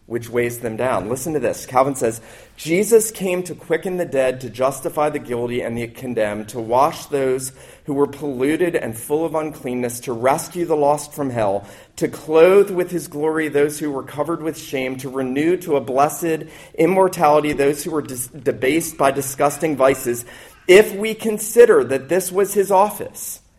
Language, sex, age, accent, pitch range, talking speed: English, male, 40-59, American, 130-180 Hz, 180 wpm